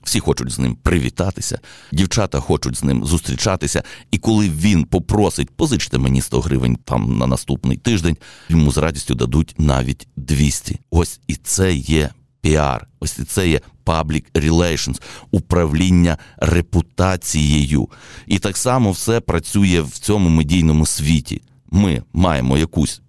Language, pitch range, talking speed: Ukrainian, 70-90 Hz, 140 wpm